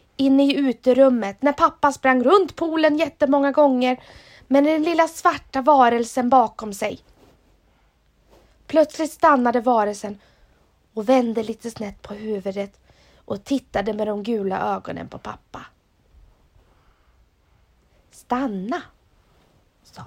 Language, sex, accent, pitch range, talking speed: English, female, Swedish, 200-270 Hz, 110 wpm